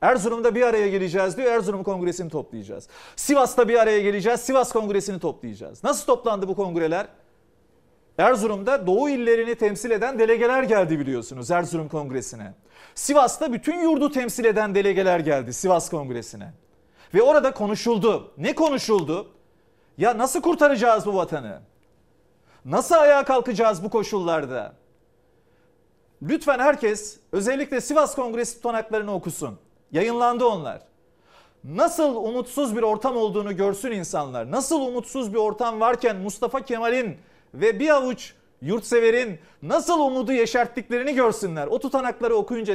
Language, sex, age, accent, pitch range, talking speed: Turkish, male, 40-59, native, 190-250 Hz, 120 wpm